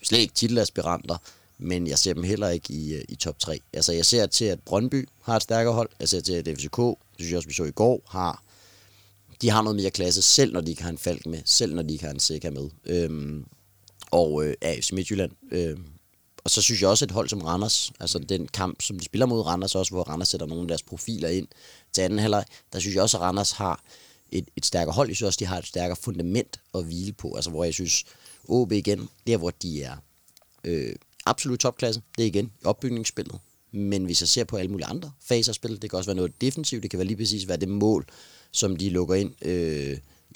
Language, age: Danish, 30-49